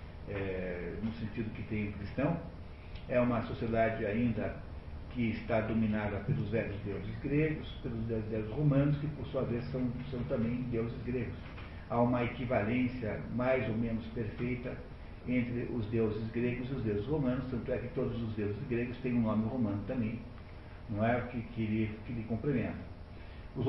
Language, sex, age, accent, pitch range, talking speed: Portuguese, male, 50-69, Brazilian, 105-125 Hz, 165 wpm